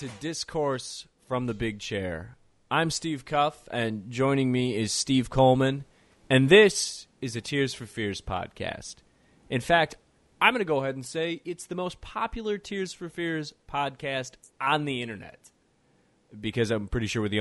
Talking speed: 170 wpm